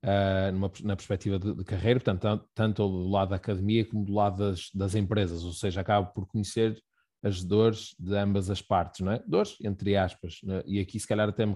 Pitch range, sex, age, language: 90-105 Hz, male, 20-39, Portuguese